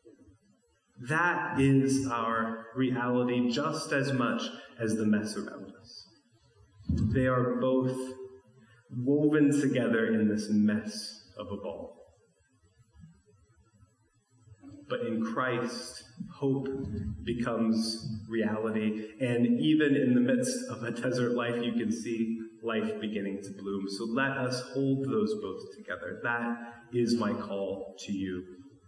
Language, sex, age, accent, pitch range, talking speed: English, male, 30-49, American, 105-130 Hz, 120 wpm